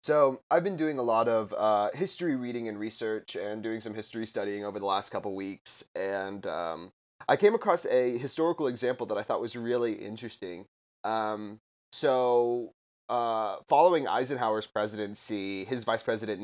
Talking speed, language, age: 165 wpm, English, 20-39